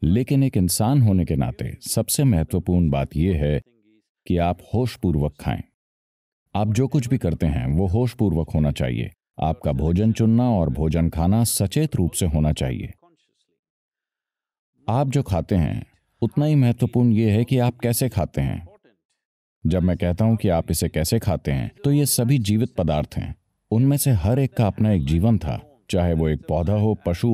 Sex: male